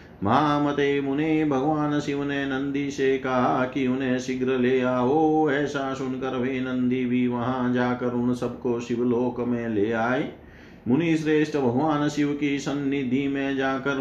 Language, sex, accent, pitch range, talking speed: Hindi, male, native, 125-140 Hz, 145 wpm